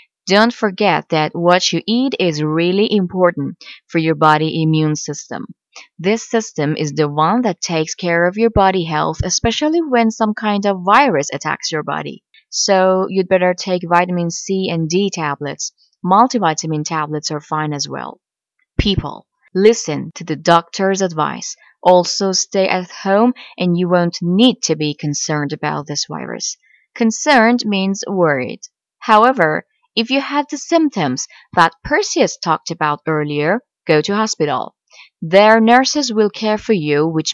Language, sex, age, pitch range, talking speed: Persian, female, 20-39, 160-225 Hz, 150 wpm